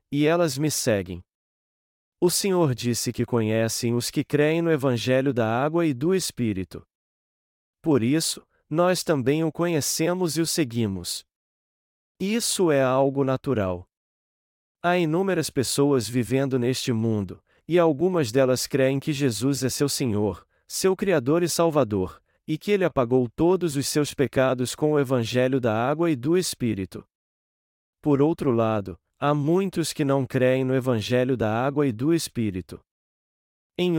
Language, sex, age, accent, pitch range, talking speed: Portuguese, male, 40-59, Brazilian, 115-160 Hz, 145 wpm